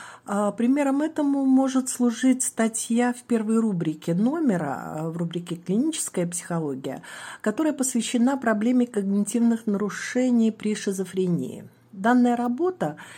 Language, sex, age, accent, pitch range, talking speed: Russian, female, 50-69, native, 185-245 Hz, 100 wpm